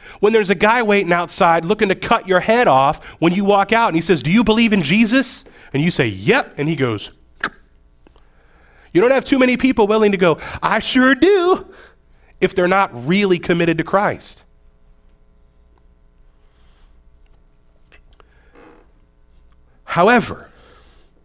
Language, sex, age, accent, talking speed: English, male, 40-59, American, 145 wpm